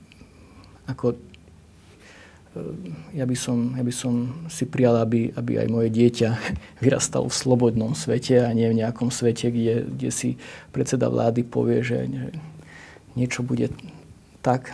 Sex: male